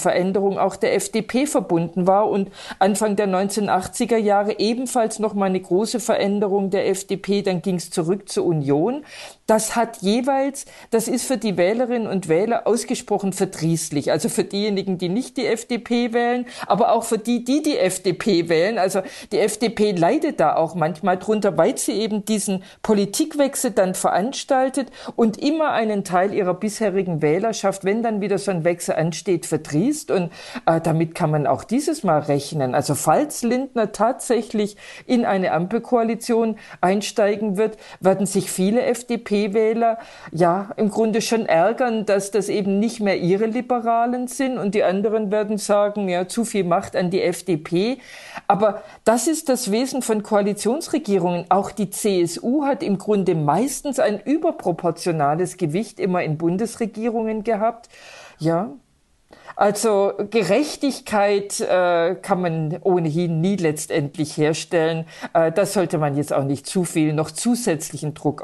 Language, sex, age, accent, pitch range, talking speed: German, female, 50-69, German, 180-230 Hz, 150 wpm